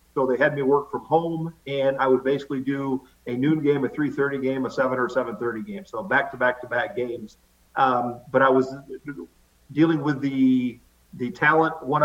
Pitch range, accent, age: 130-155 Hz, American, 50-69